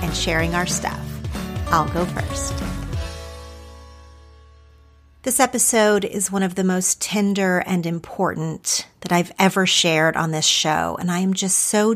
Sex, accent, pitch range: female, American, 155-190 Hz